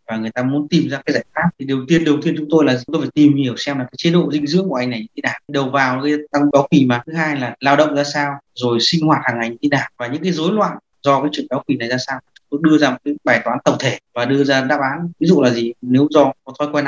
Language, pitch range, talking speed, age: Vietnamese, 130-165 Hz, 330 wpm, 20-39